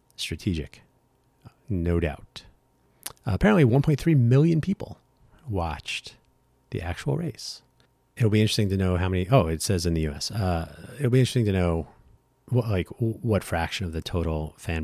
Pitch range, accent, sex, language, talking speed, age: 85-125 Hz, American, male, English, 160 wpm, 30-49